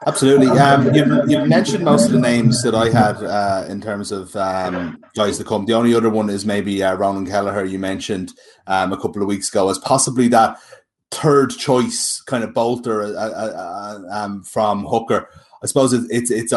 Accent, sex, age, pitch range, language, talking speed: Irish, male, 30-49, 105-120 Hz, English, 190 wpm